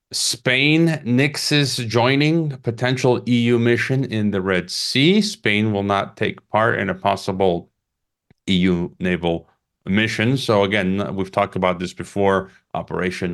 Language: English